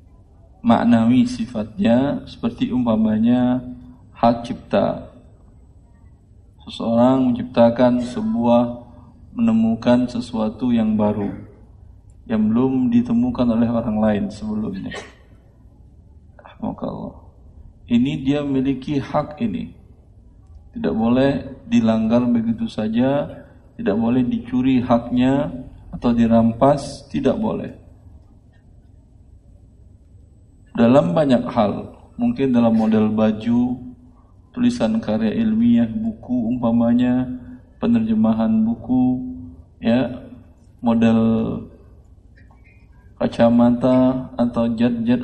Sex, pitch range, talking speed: male, 105-135 Hz, 75 wpm